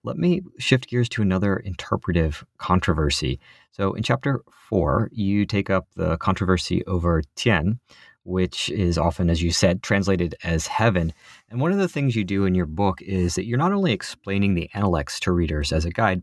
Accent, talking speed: American, 190 wpm